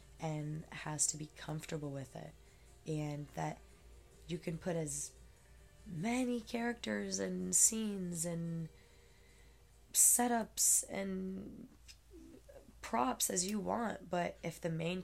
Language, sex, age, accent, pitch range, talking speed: English, female, 20-39, American, 155-185 Hz, 110 wpm